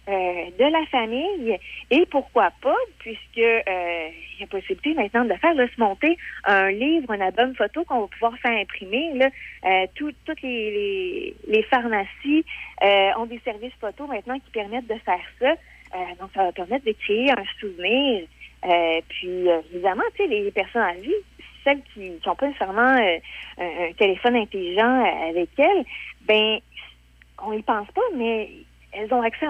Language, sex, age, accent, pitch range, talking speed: French, female, 30-49, Canadian, 195-275 Hz, 175 wpm